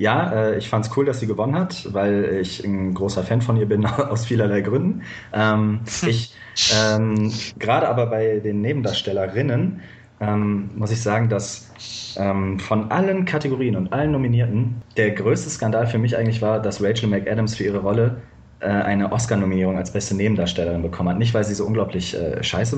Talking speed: 180 wpm